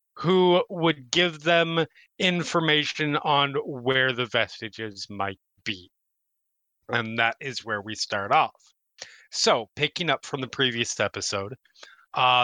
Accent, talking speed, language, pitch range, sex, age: American, 125 wpm, English, 125-170 Hz, male, 30-49